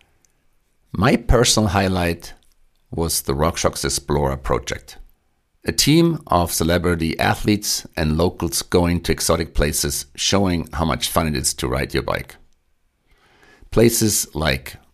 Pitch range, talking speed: 70-90 Hz, 125 wpm